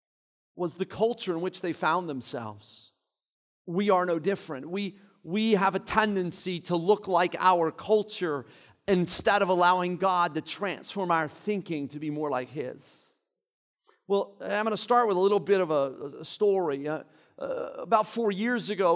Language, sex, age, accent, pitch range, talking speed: English, male, 40-59, American, 170-210 Hz, 170 wpm